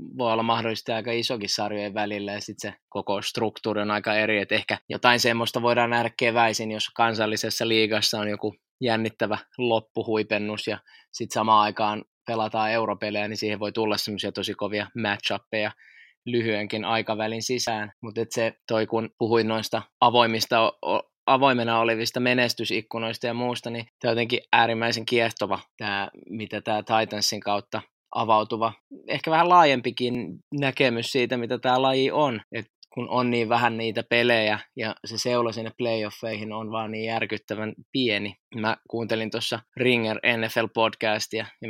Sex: male